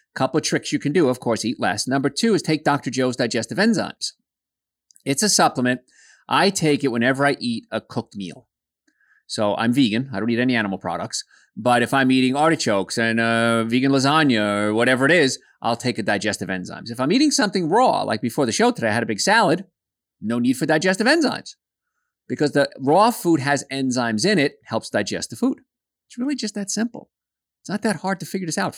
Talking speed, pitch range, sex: 215 wpm, 115-165 Hz, male